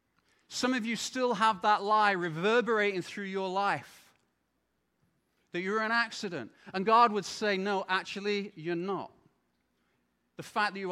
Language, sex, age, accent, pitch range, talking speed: English, male, 40-59, British, 180-220 Hz, 150 wpm